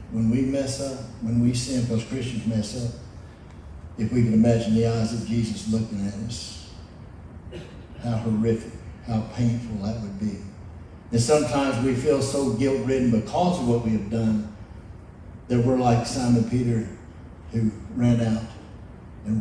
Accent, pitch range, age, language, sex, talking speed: American, 110-155 Hz, 60-79, English, male, 155 wpm